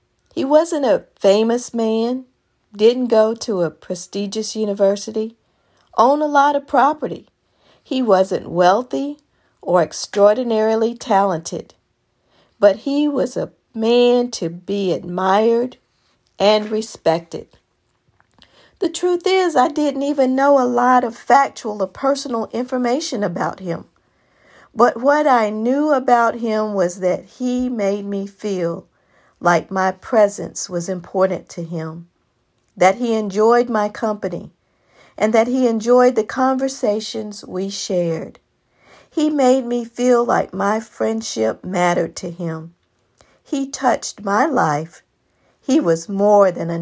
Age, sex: 50-69, female